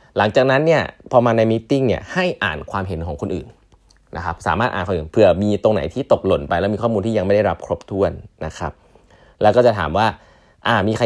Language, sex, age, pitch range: Thai, male, 20-39, 90-120 Hz